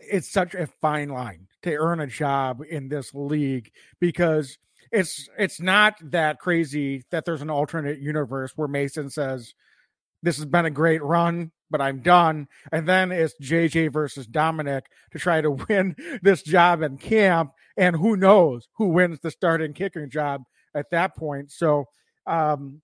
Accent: American